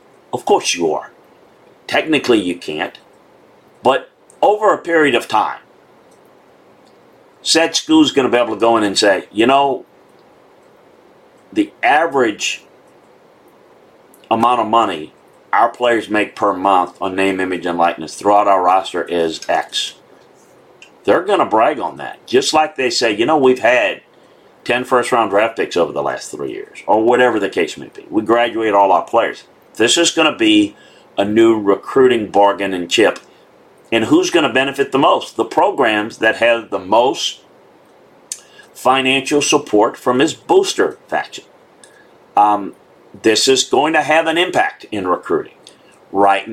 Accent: American